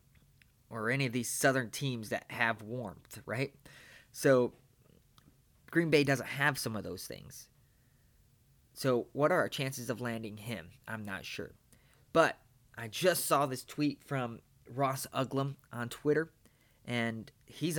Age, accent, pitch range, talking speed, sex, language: 20-39, American, 120-145 Hz, 145 wpm, male, English